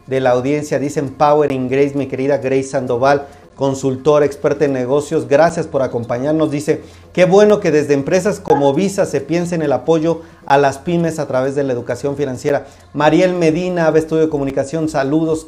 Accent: Mexican